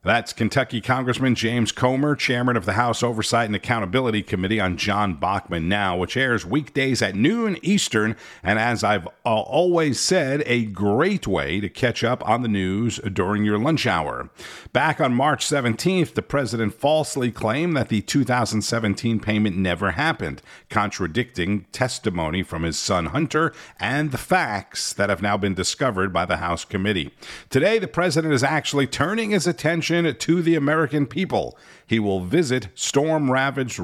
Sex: male